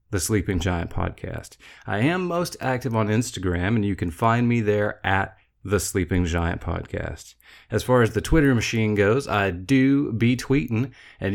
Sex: male